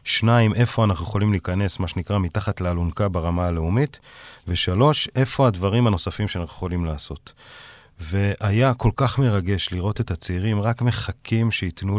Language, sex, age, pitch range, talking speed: Hebrew, male, 40-59, 100-125 Hz, 140 wpm